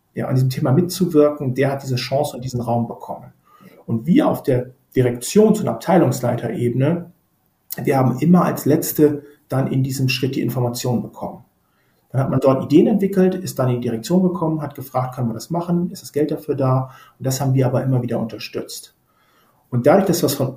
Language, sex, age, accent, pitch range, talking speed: German, male, 40-59, German, 120-150 Hz, 200 wpm